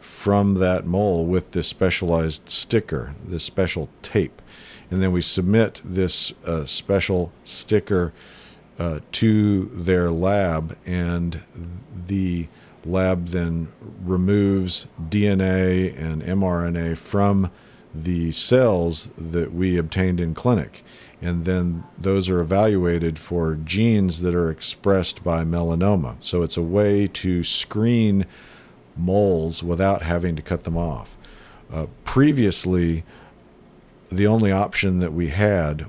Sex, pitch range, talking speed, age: male, 85-95 Hz, 120 wpm, 50-69